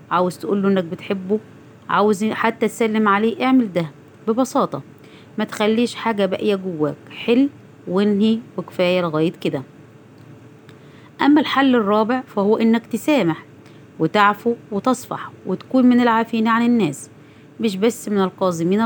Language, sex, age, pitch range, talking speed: Arabic, female, 30-49, 165-225 Hz, 120 wpm